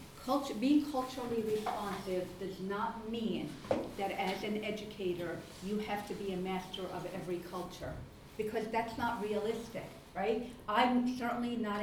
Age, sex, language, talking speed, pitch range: 50-69, female, English, 135 wpm, 185-220 Hz